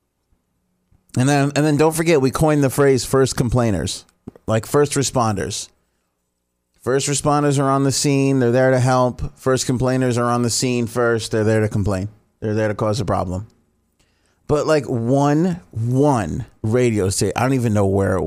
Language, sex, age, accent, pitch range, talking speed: English, male, 30-49, American, 95-130 Hz, 175 wpm